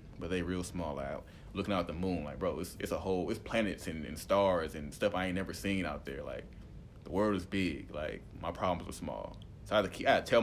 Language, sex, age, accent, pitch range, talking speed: English, male, 30-49, American, 80-95 Hz, 265 wpm